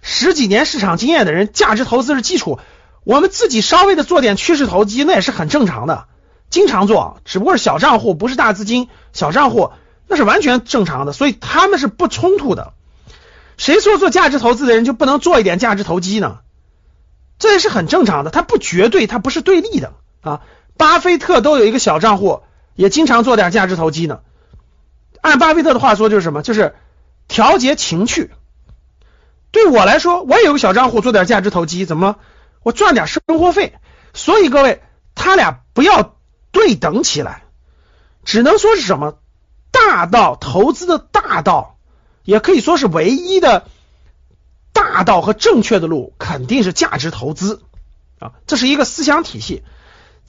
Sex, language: male, Chinese